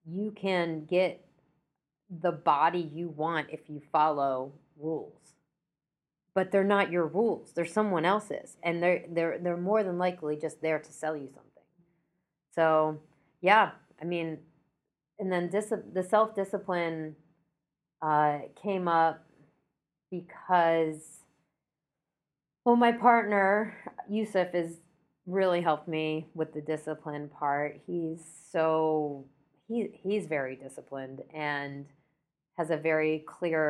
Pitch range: 150-175 Hz